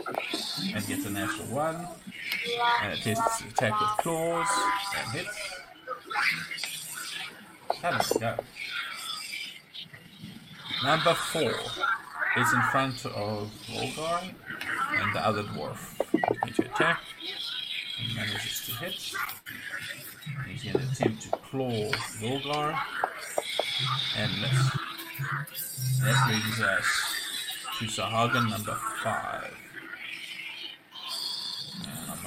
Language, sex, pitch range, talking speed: English, male, 115-175 Hz, 95 wpm